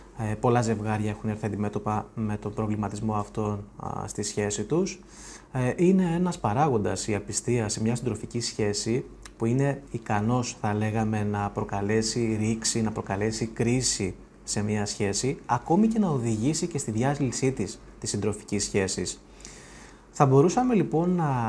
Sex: male